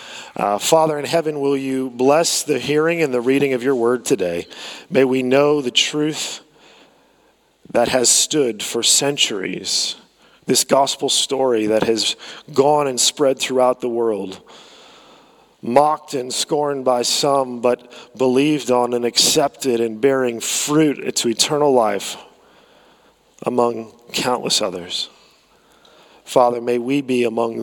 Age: 40-59